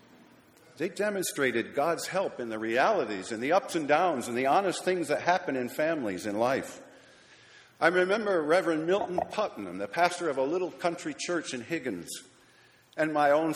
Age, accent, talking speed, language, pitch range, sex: 50-69, American, 175 wpm, English, 120-175 Hz, male